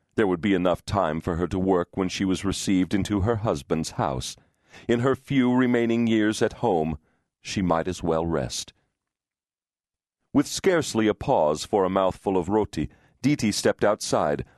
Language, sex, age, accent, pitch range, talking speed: English, male, 40-59, American, 90-115 Hz, 170 wpm